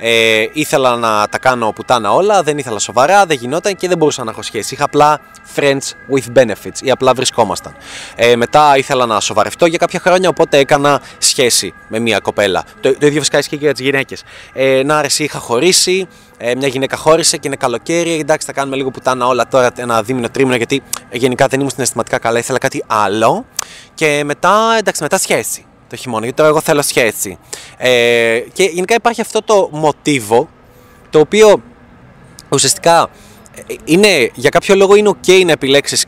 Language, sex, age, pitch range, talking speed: Greek, male, 20-39, 125-160 Hz, 190 wpm